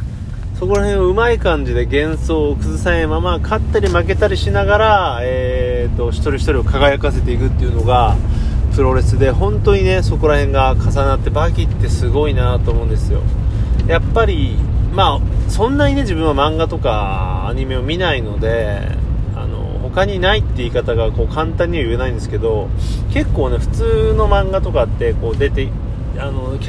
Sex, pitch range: male, 95-115 Hz